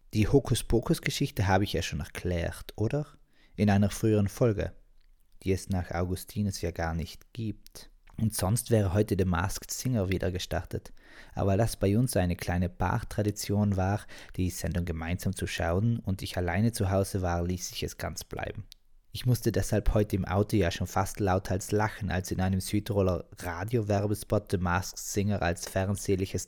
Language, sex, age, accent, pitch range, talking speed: German, male, 20-39, German, 95-110 Hz, 170 wpm